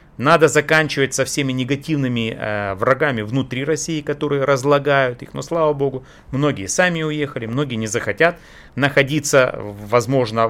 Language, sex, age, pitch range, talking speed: Russian, male, 30-49, 120-170 Hz, 130 wpm